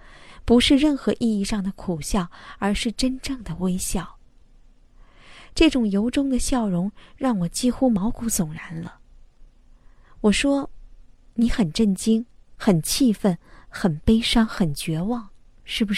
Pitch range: 200-255 Hz